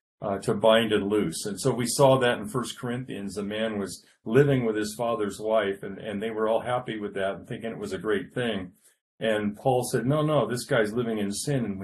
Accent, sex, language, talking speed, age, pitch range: American, male, English, 245 wpm, 40-59, 105-130 Hz